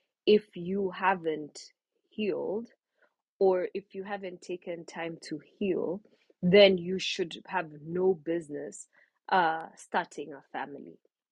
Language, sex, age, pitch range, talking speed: English, female, 20-39, 165-220 Hz, 115 wpm